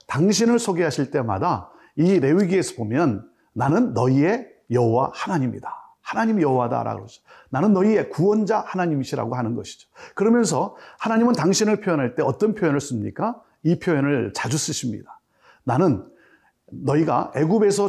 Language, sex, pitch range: Korean, male, 130-200 Hz